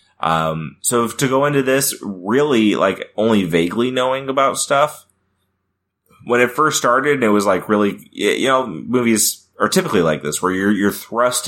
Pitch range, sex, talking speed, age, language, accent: 85-105 Hz, male, 165 wpm, 30-49, English, American